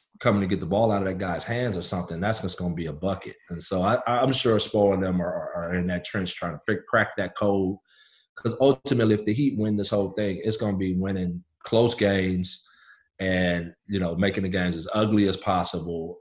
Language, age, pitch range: English, 30-49, 90-110 Hz